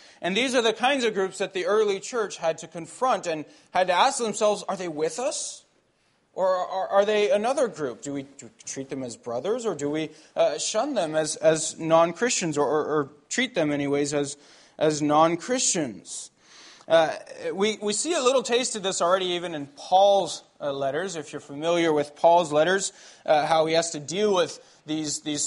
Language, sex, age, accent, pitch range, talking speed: English, male, 20-39, American, 145-185 Hz, 195 wpm